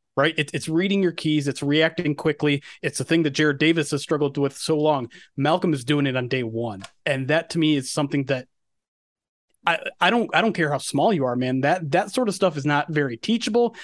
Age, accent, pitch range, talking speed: 30-49, American, 140-180 Hz, 230 wpm